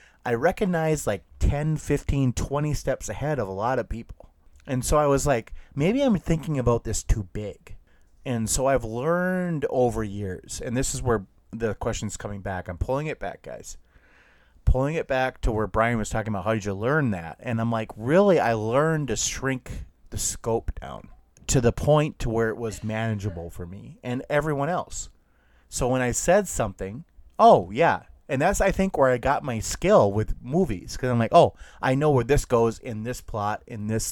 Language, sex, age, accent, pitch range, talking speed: English, male, 30-49, American, 100-135 Hz, 200 wpm